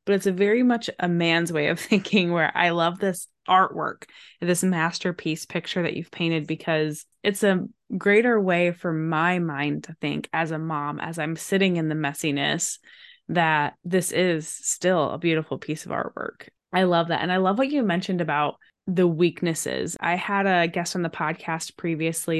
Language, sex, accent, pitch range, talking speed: English, female, American, 160-185 Hz, 185 wpm